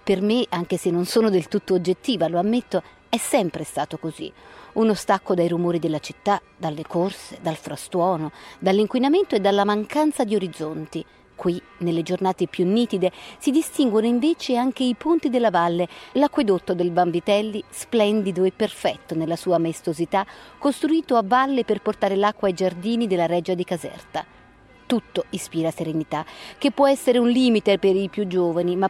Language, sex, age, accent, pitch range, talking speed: Italian, female, 40-59, native, 170-215 Hz, 160 wpm